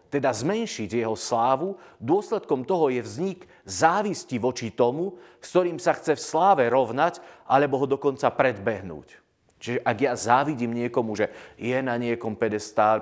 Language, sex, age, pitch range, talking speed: Slovak, male, 30-49, 115-155 Hz, 150 wpm